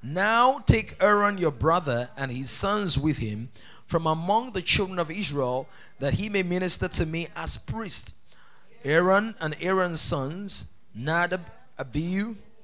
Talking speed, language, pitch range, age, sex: 140 wpm, English, 155-210 Hz, 30-49, male